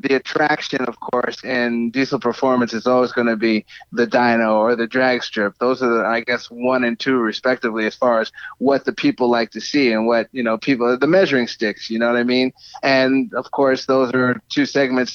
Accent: American